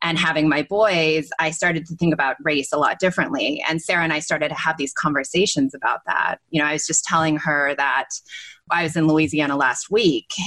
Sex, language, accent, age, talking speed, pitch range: female, English, American, 20-39, 220 wpm, 150-175 Hz